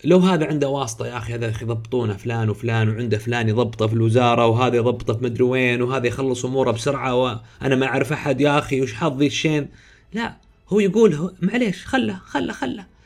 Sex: male